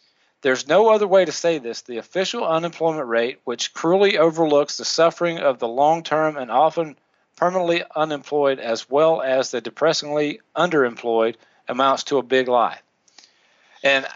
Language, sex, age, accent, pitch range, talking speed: English, male, 40-59, American, 130-170 Hz, 150 wpm